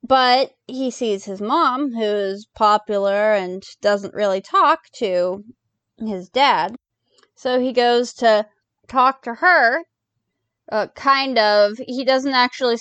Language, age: English, 20-39